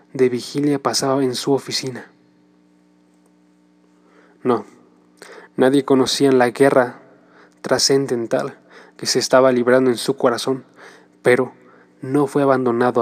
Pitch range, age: 120-145 Hz, 20-39